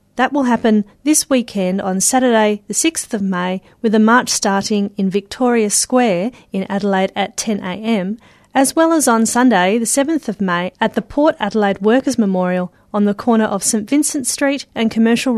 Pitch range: 195-245 Hz